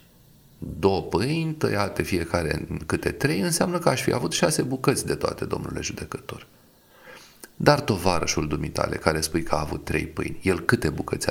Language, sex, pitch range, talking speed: Romanian, male, 80-120 Hz, 165 wpm